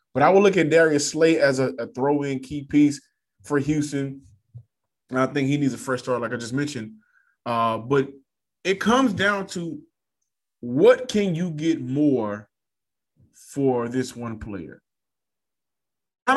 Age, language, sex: 20-39, English, male